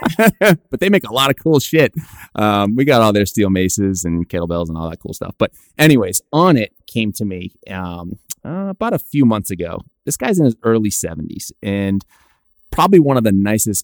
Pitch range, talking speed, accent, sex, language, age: 95-125 Hz, 210 wpm, American, male, English, 30-49